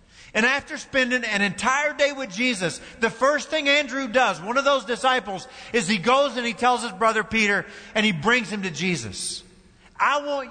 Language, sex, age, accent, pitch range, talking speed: English, male, 50-69, American, 140-235 Hz, 195 wpm